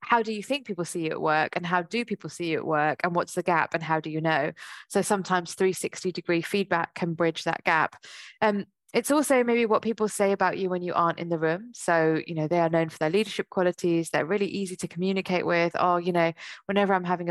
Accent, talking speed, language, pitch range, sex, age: British, 245 wpm, English, 165-195 Hz, female, 20-39